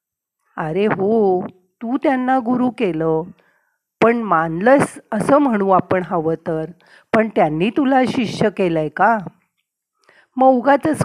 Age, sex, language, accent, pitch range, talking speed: 50-69, female, Marathi, native, 185-250 Hz, 115 wpm